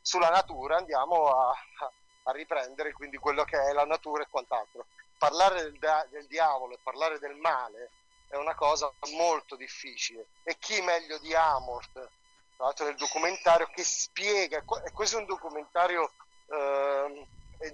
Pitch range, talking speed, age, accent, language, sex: 145-195 Hz, 145 wpm, 40-59, native, Italian, male